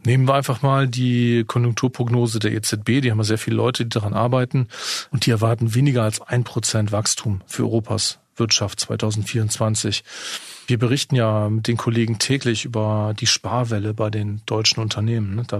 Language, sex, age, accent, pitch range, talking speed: German, male, 40-59, German, 110-125 Hz, 170 wpm